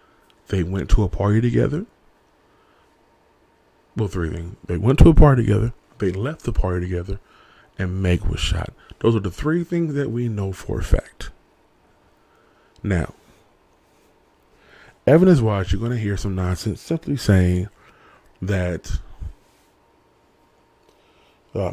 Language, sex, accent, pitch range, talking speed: English, male, American, 90-120 Hz, 130 wpm